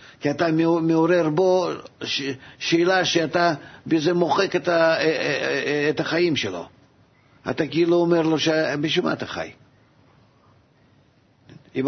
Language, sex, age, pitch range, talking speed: Hebrew, male, 50-69, 135-165 Hz, 120 wpm